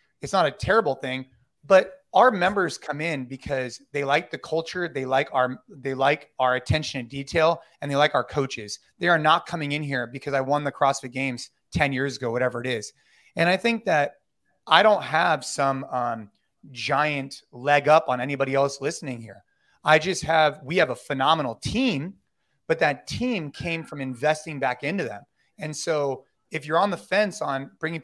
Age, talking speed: 30-49, 195 wpm